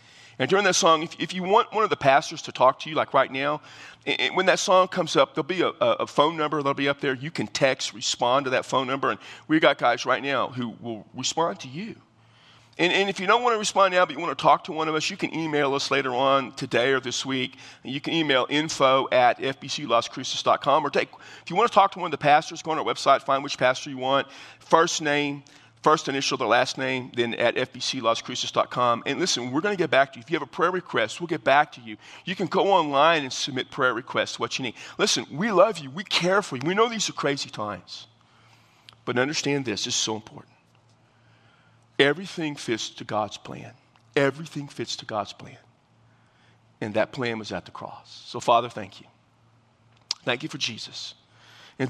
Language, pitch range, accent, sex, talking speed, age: English, 120-150 Hz, American, male, 225 wpm, 40-59